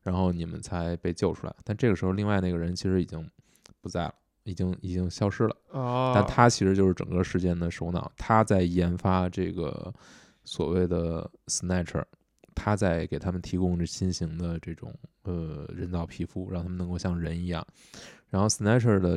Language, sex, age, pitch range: Chinese, male, 20-39, 90-105 Hz